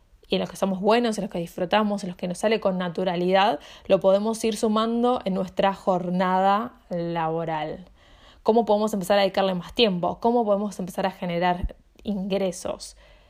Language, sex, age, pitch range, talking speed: Spanish, female, 20-39, 180-215 Hz, 170 wpm